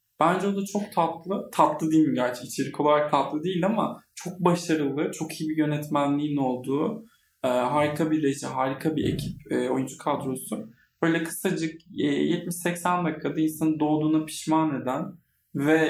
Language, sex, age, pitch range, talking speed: Turkish, male, 20-39, 145-180 Hz, 150 wpm